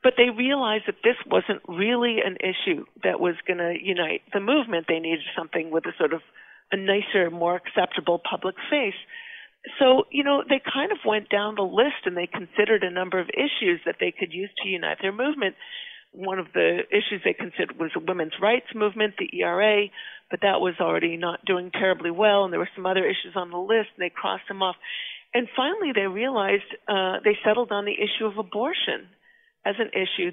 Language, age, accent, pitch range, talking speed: English, 50-69, American, 185-245 Hz, 205 wpm